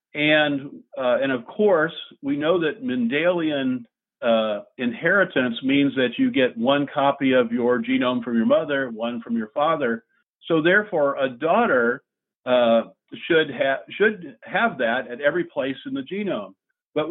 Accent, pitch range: American, 130-195 Hz